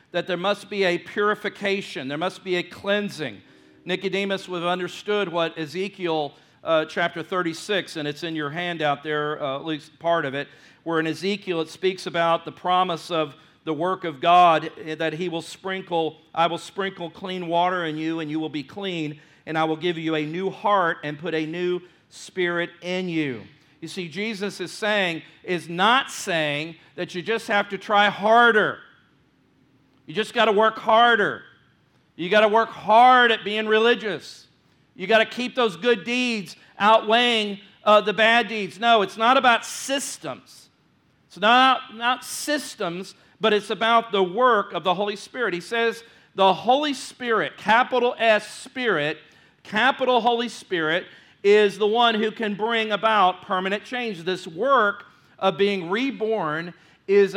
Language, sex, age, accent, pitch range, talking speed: English, male, 50-69, American, 165-220 Hz, 170 wpm